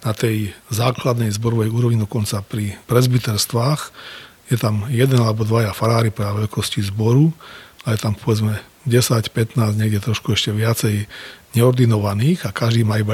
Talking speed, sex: 145 wpm, male